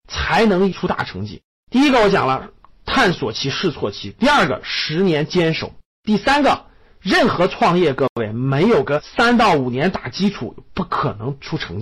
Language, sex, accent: Chinese, male, native